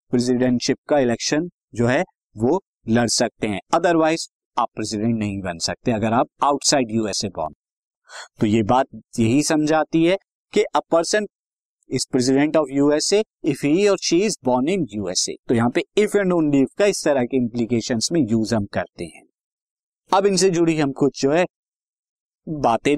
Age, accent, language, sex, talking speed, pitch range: 50-69, native, Hindi, male, 160 wpm, 125-190 Hz